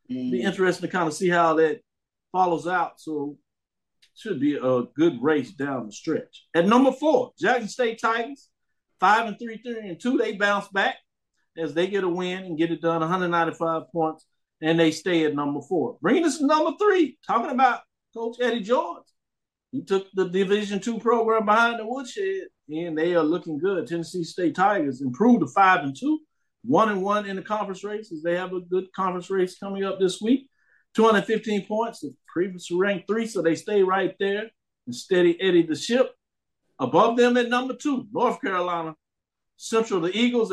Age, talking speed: 50-69, 190 wpm